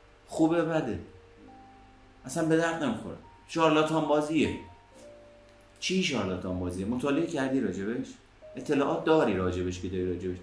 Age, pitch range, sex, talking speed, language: 30-49, 95-140 Hz, male, 115 wpm, Persian